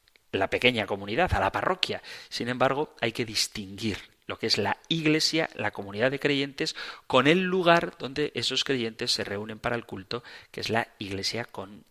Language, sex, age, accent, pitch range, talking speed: Spanish, male, 40-59, Spanish, 110-160 Hz, 180 wpm